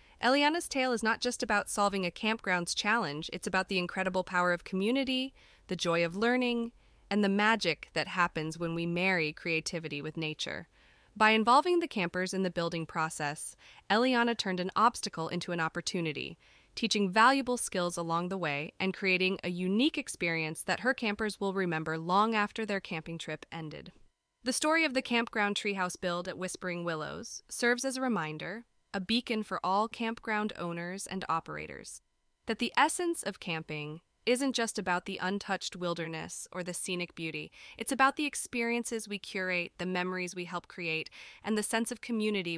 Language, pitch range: English, 175-230 Hz